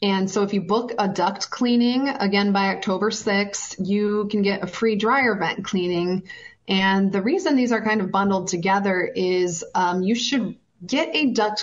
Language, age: English, 20-39